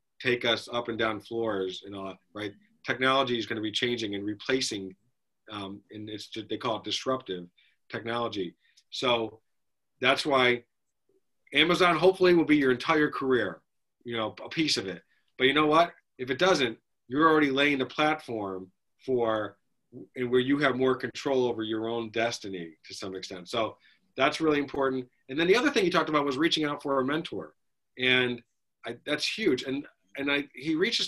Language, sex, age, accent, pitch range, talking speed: English, male, 40-59, American, 110-145 Hz, 180 wpm